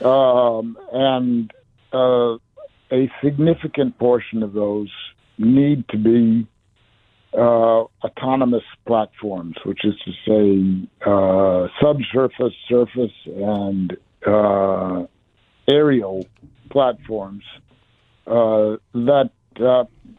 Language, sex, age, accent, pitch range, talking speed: English, male, 60-79, American, 105-125 Hz, 80 wpm